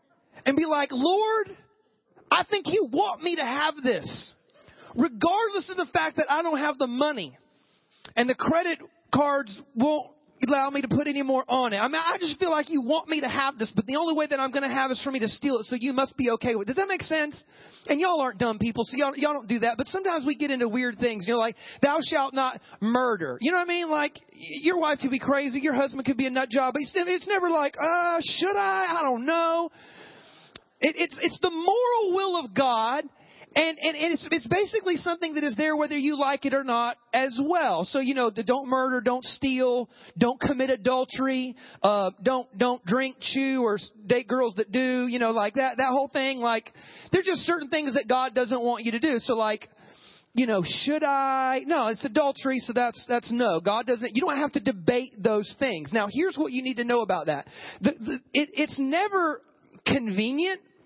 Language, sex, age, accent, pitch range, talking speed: English, male, 30-49, American, 250-320 Hz, 225 wpm